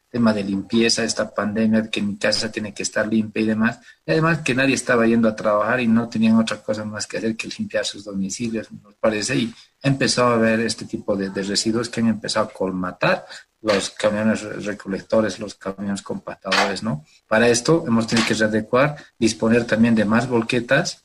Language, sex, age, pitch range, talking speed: Spanish, male, 40-59, 100-115 Hz, 195 wpm